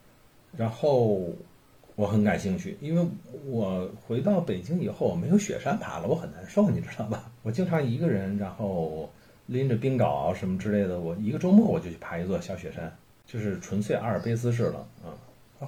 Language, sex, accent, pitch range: Chinese, male, native, 100-170 Hz